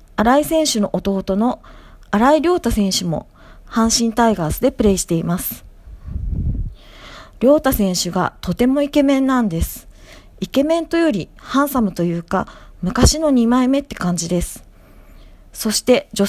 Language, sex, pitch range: Japanese, female, 180-265 Hz